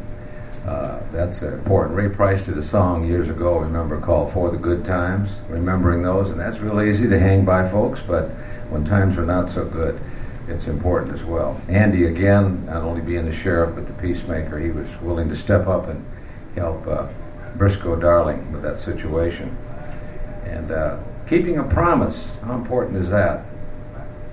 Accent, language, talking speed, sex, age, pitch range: American, English, 170 wpm, male, 60-79, 85-110 Hz